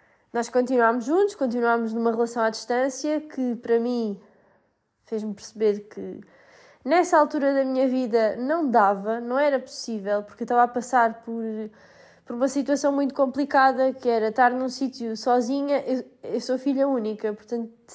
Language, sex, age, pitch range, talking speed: Portuguese, female, 20-39, 215-255 Hz, 155 wpm